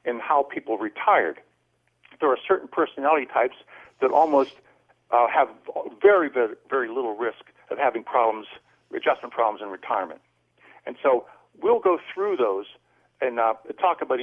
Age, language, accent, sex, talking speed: 60-79, English, American, male, 150 wpm